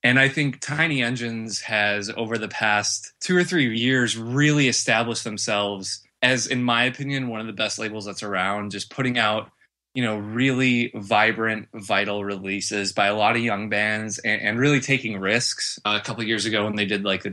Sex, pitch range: male, 105-120 Hz